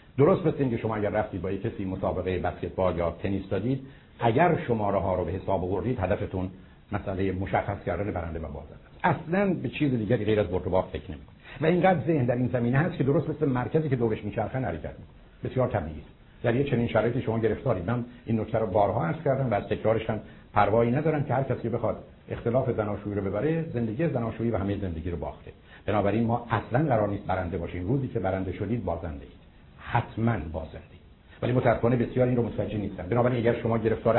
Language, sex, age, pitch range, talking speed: Persian, male, 70-89, 100-130 Hz, 160 wpm